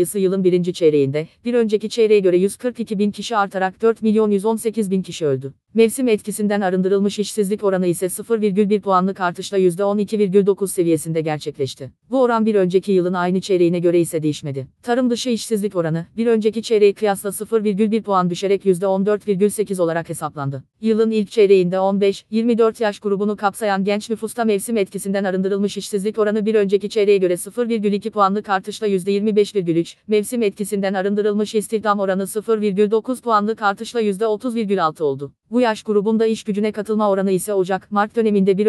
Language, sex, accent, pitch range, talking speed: Turkish, female, native, 190-215 Hz, 150 wpm